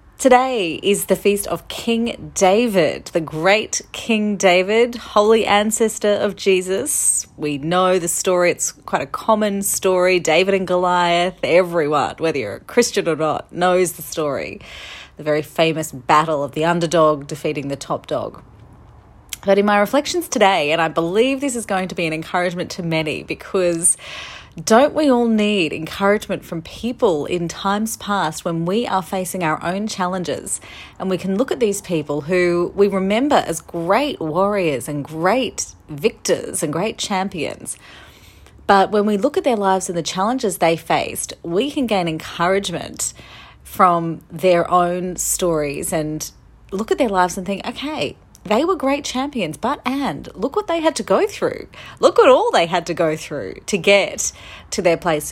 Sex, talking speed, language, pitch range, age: female, 170 wpm, English, 165-220 Hz, 30-49